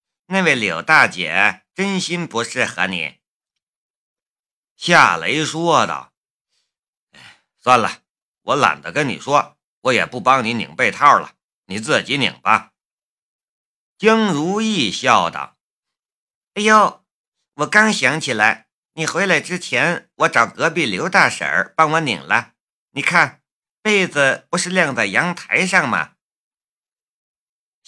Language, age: Chinese, 50-69